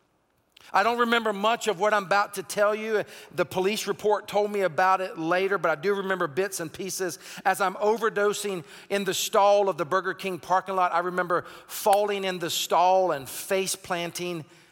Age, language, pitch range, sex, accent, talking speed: 40-59, English, 150-195 Hz, male, American, 190 wpm